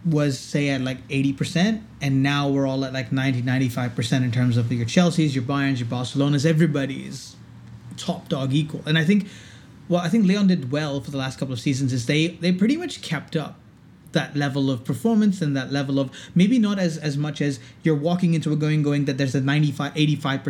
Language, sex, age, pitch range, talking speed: English, male, 30-49, 135-160 Hz, 210 wpm